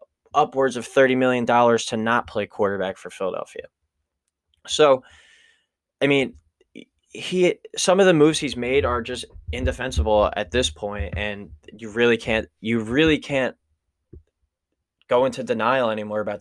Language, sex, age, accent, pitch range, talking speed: English, male, 20-39, American, 110-145 Hz, 145 wpm